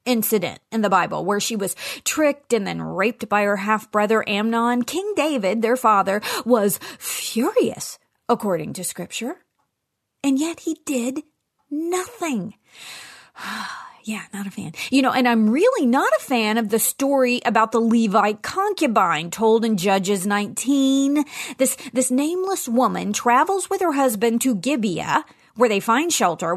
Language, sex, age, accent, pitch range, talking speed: English, female, 30-49, American, 225-310 Hz, 150 wpm